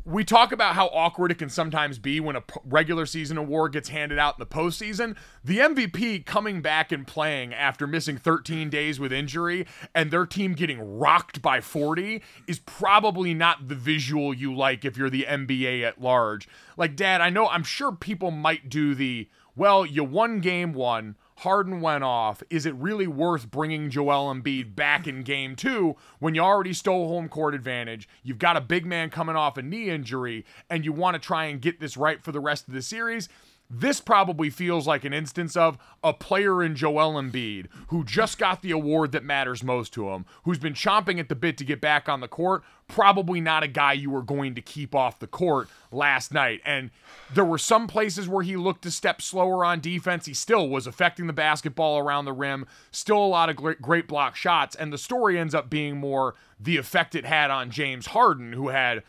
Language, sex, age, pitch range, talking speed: English, male, 30-49, 140-175 Hz, 210 wpm